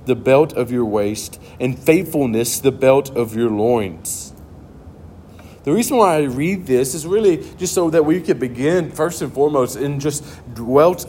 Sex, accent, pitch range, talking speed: male, American, 125-180 Hz, 175 wpm